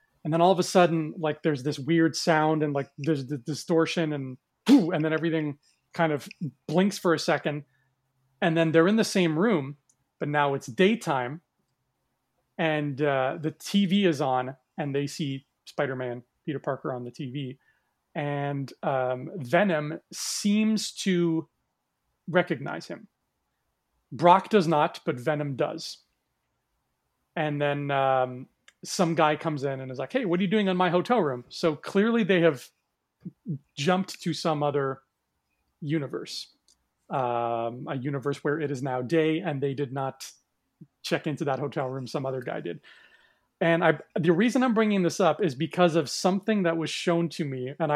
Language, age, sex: English, 30-49, male